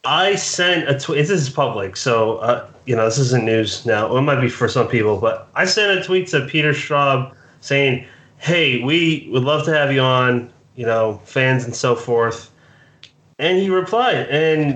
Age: 30-49